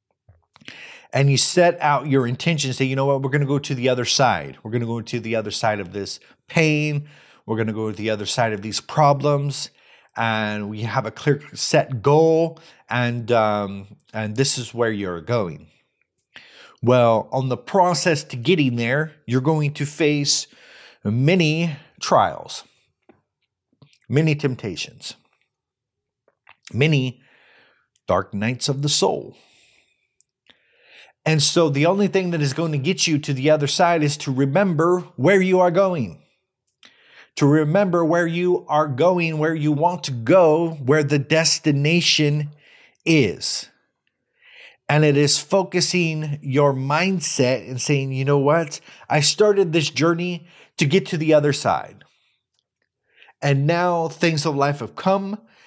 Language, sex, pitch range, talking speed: English, male, 130-165 Hz, 150 wpm